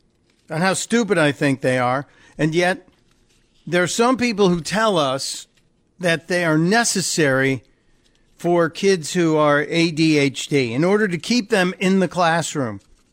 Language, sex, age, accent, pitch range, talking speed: English, male, 50-69, American, 140-185 Hz, 150 wpm